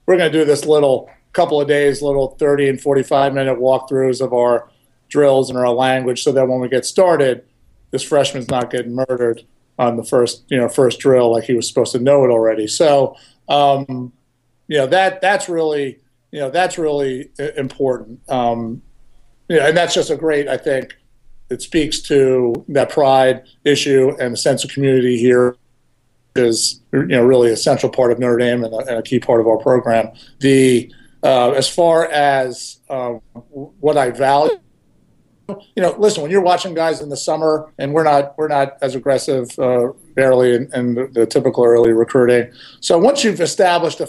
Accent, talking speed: American, 190 wpm